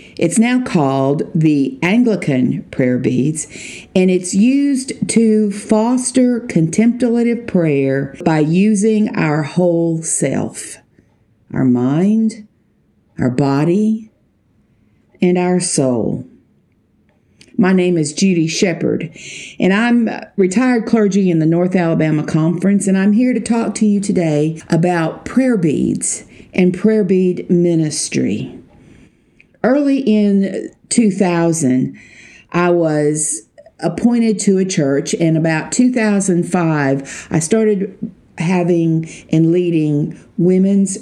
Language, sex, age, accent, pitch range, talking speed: English, female, 50-69, American, 160-215 Hz, 110 wpm